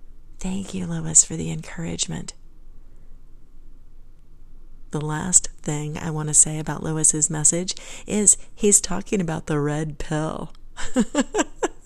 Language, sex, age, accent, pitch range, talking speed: English, female, 40-59, American, 150-195 Hz, 115 wpm